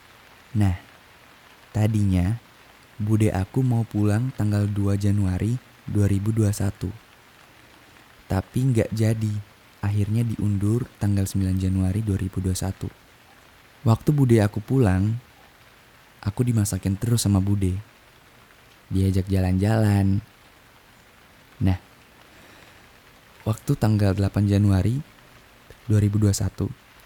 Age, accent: 20-39, native